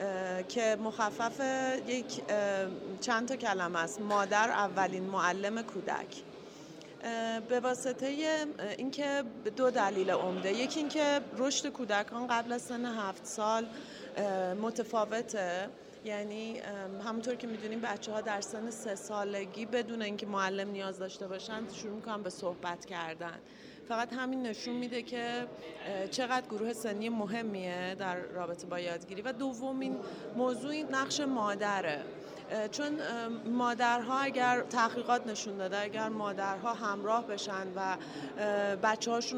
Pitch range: 200-245 Hz